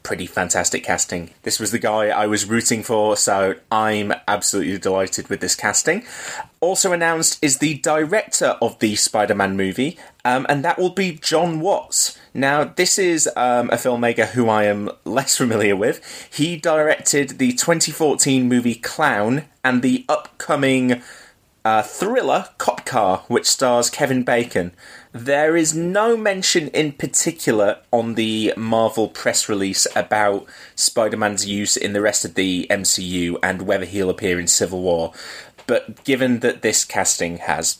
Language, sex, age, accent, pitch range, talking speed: English, male, 30-49, British, 95-130 Hz, 150 wpm